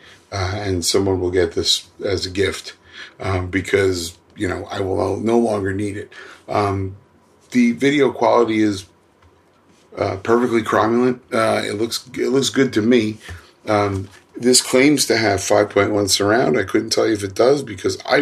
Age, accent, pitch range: 30-49, American, 95-115 Hz